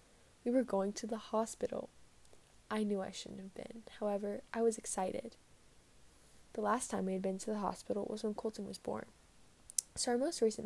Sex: female